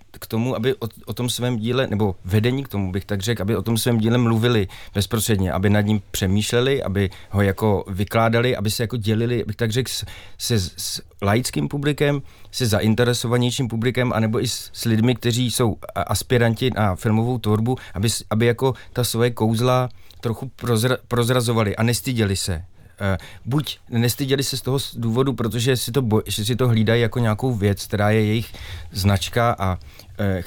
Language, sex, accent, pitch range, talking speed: Czech, male, native, 100-120 Hz, 175 wpm